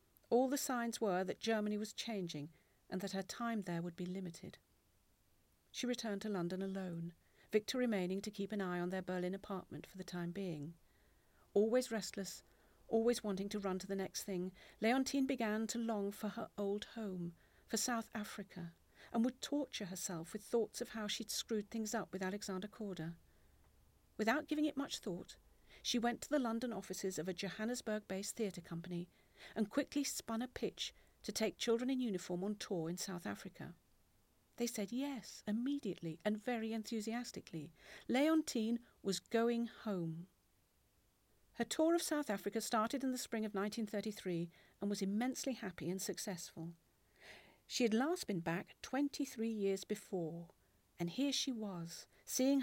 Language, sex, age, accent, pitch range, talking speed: English, female, 50-69, British, 185-235 Hz, 165 wpm